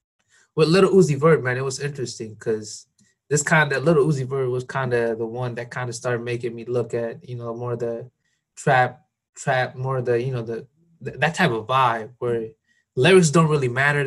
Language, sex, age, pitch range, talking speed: English, male, 20-39, 120-145 Hz, 220 wpm